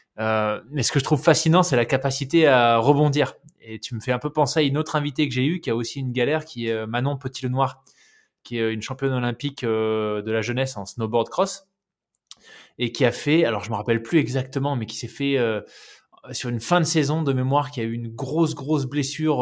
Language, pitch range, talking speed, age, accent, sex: French, 115-150 Hz, 240 wpm, 20-39, French, male